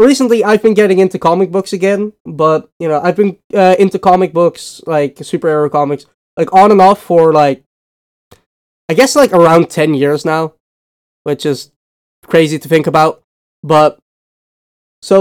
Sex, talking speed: male, 160 wpm